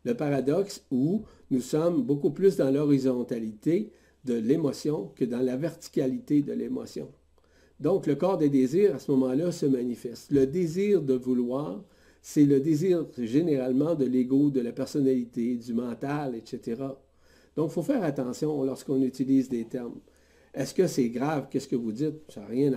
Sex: male